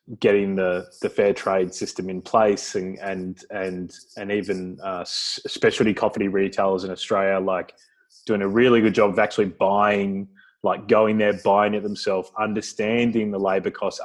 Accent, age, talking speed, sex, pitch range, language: Australian, 20-39, 160 wpm, male, 95-105 Hz, English